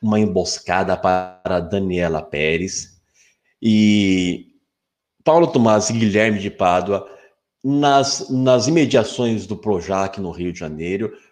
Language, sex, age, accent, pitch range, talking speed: Portuguese, male, 20-39, Brazilian, 95-125 Hz, 110 wpm